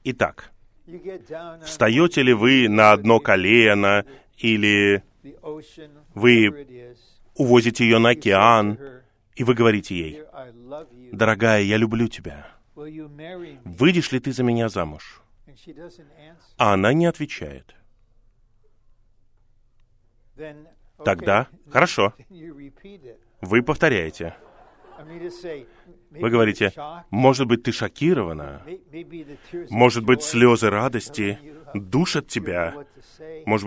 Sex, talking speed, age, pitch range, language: male, 85 wpm, 30-49, 105-145 Hz, Russian